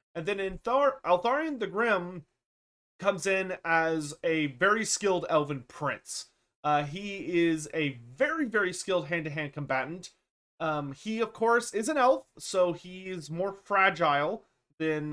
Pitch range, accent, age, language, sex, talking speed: 145-180 Hz, American, 30-49, English, male, 140 wpm